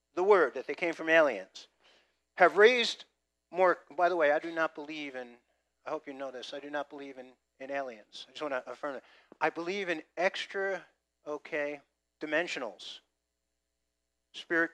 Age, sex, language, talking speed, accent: 50-69, male, English, 175 wpm, American